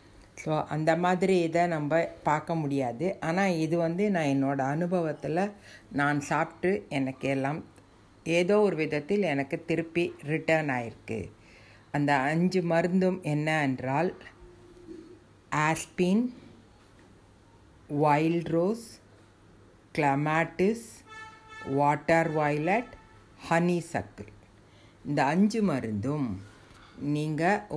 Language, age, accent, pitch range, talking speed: Tamil, 50-69, native, 125-175 Hz, 85 wpm